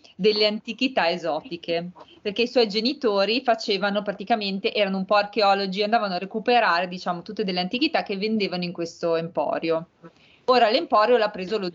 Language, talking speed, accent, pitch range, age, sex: Italian, 155 wpm, native, 170-215 Hz, 30-49, female